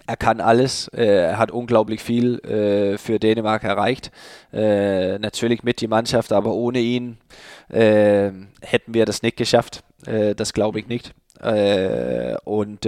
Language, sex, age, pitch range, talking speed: German, male, 20-39, 100-110 Hz, 155 wpm